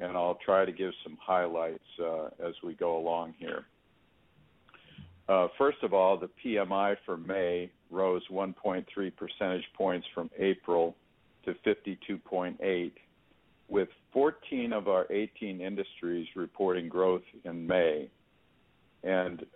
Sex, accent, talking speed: male, American, 125 wpm